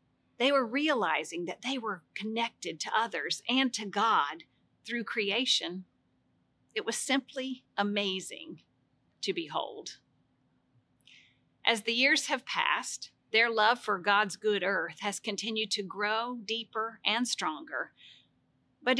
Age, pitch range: 50-69, 200-245 Hz